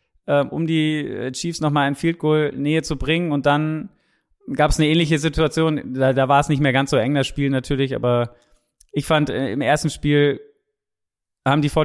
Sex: male